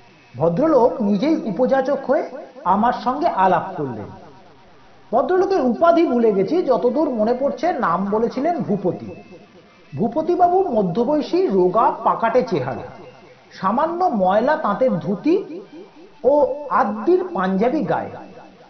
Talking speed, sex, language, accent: 105 wpm, male, Bengali, native